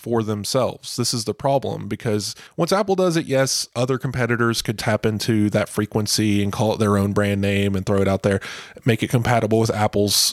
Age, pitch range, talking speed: 20-39, 105-125 Hz, 210 wpm